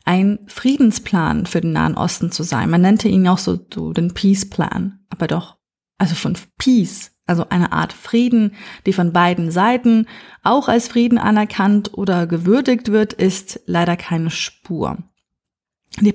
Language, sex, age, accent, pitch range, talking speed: German, female, 30-49, German, 185-230 Hz, 150 wpm